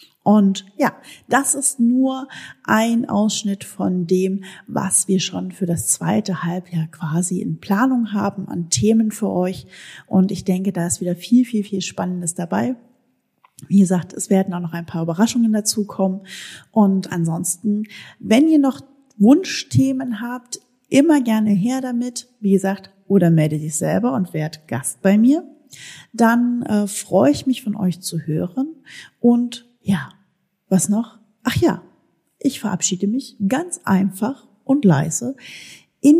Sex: female